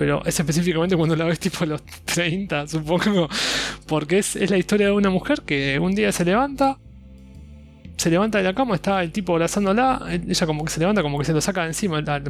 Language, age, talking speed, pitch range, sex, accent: Spanish, 20-39, 215 wpm, 145-185 Hz, male, Argentinian